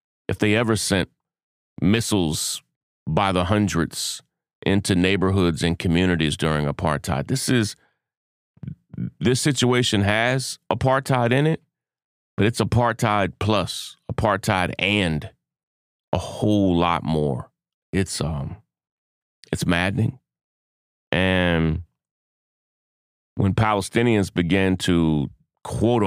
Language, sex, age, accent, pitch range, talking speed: English, male, 30-49, American, 80-105 Hz, 95 wpm